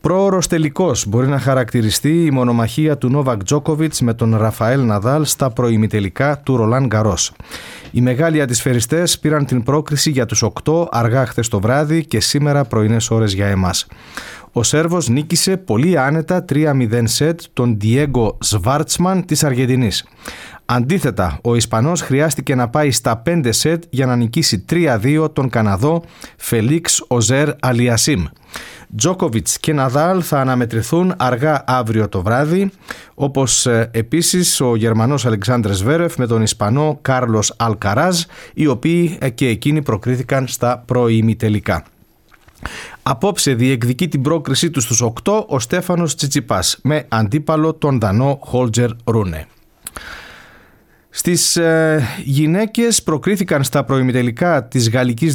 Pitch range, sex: 115-155 Hz, male